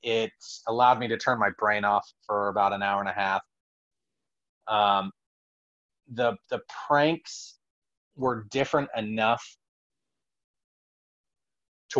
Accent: American